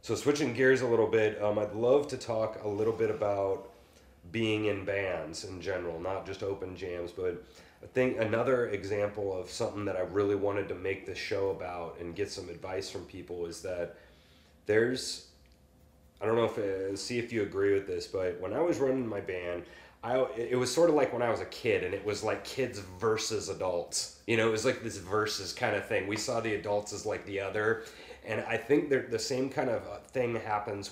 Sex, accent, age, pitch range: male, American, 30-49, 95-120 Hz